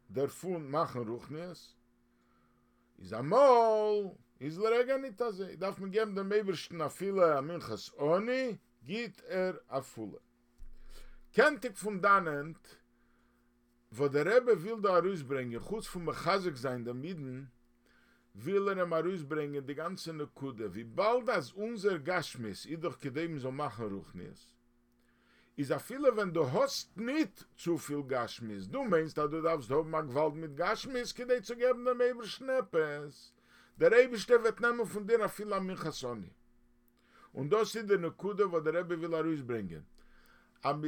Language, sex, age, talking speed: English, male, 50-69, 160 wpm